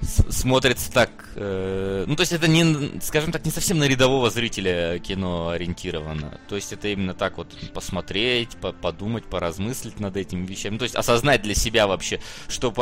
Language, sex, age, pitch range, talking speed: Russian, male, 20-39, 95-125 Hz, 170 wpm